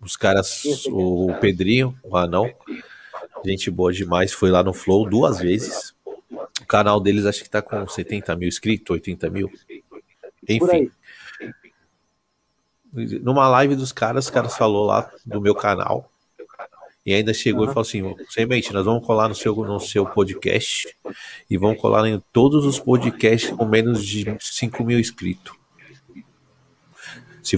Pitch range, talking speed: 100-120 Hz, 150 wpm